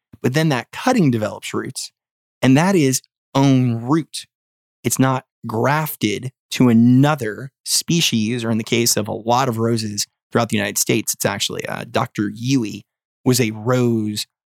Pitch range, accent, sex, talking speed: 115-145 Hz, American, male, 155 wpm